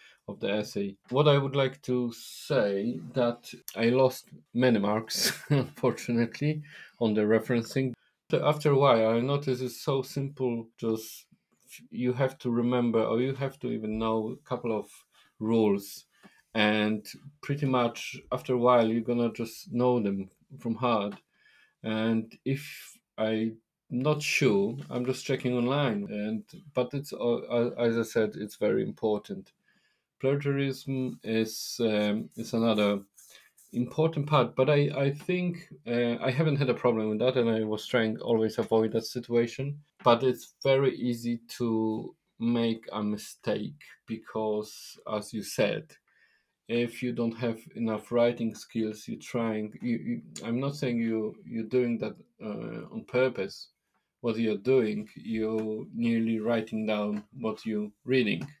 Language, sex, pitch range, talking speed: English, male, 110-135 Hz, 145 wpm